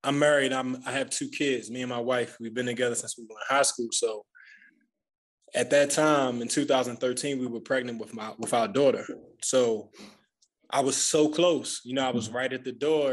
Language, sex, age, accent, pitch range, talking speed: English, male, 20-39, American, 130-160 Hz, 215 wpm